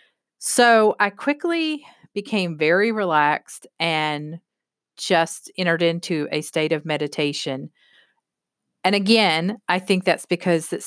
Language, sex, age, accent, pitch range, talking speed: English, female, 40-59, American, 155-195 Hz, 115 wpm